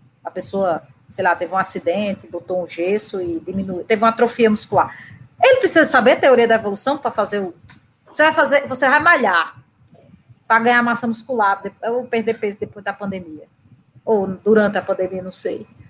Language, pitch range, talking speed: Portuguese, 195-290 Hz, 175 wpm